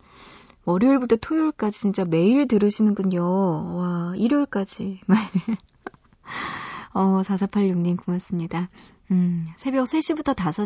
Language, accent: Korean, native